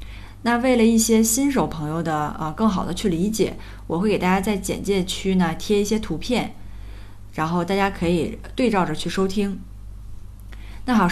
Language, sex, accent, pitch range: Chinese, female, native, 145-215 Hz